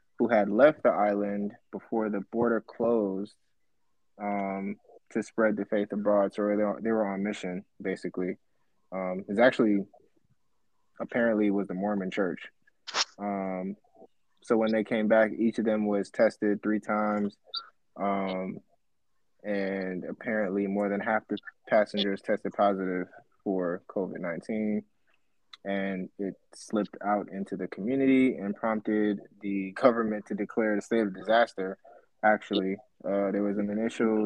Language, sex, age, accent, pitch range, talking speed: English, male, 20-39, American, 100-110 Hz, 135 wpm